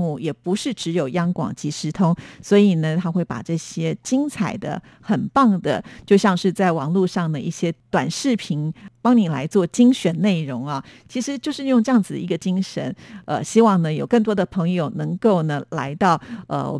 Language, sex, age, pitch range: Chinese, female, 50-69, 165-210 Hz